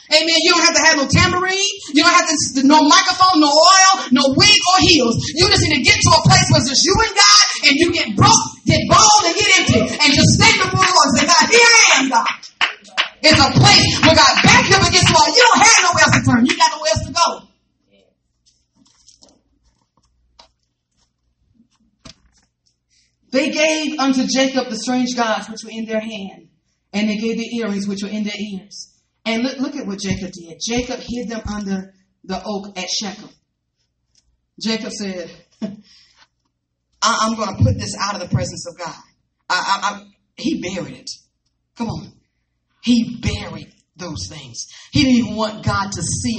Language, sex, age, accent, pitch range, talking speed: English, female, 30-49, American, 180-290 Hz, 190 wpm